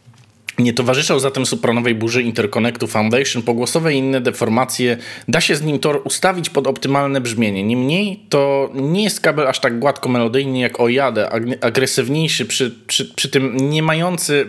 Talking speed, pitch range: 155 wpm, 115-140 Hz